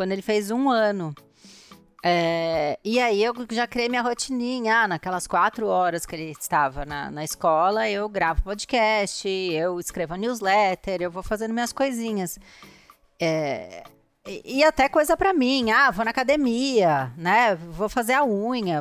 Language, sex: Portuguese, female